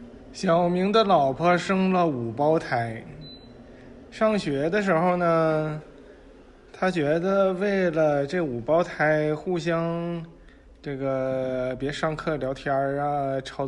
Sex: male